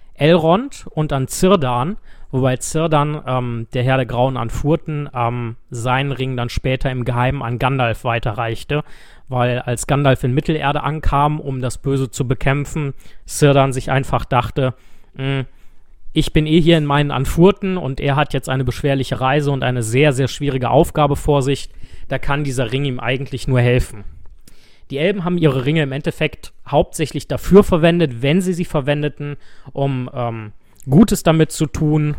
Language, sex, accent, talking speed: German, male, German, 160 wpm